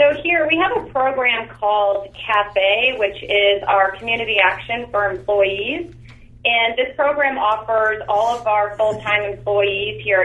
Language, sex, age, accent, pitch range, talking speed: English, female, 30-49, American, 195-230 Hz, 145 wpm